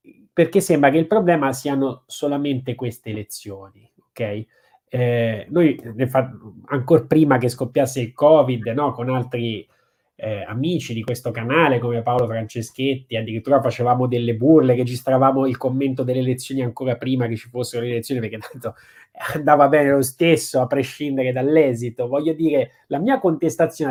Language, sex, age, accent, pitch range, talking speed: Italian, male, 20-39, native, 125-160 Hz, 155 wpm